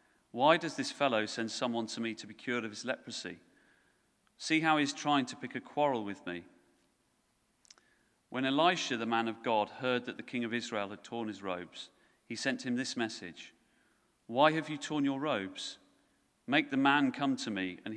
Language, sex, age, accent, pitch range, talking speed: English, male, 40-59, British, 110-130 Hz, 195 wpm